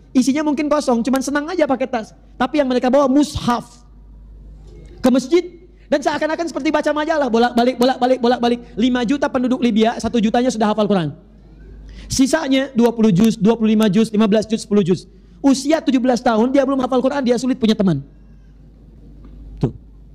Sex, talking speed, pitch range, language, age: male, 160 wpm, 190-240 Hz, Indonesian, 30-49